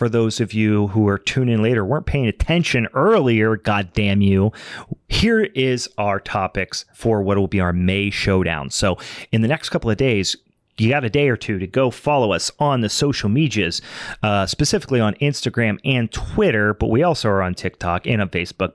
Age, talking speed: 30-49, 200 wpm